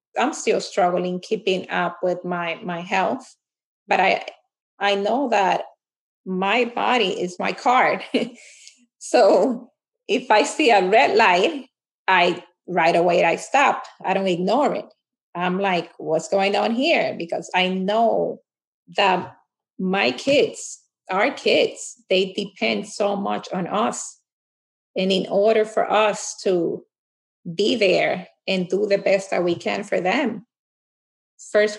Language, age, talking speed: English, 30-49, 140 wpm